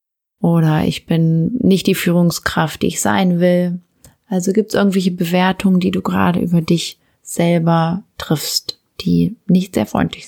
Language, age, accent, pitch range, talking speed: German, 30-49, German, 180-210 Hz, 150 wpm